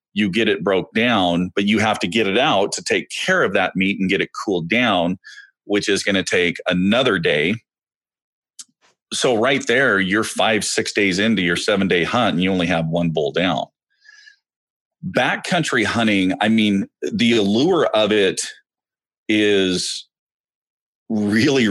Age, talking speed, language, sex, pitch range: 40-59, 165 wpm, English, male, 85-105 Hz